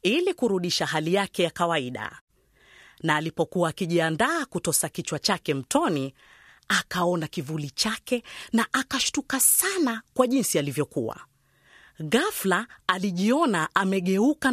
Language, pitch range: Swahili, 160-250 Hz